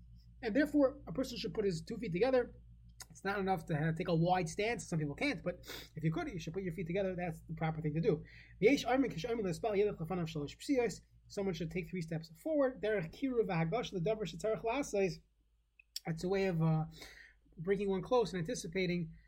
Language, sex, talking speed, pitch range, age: English, male, 170 wpm, 165-225 Hz, 20-39